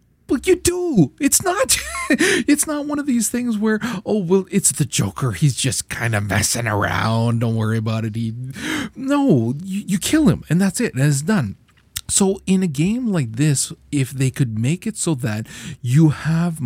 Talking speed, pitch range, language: 195 wpm, 120-170 Hz, English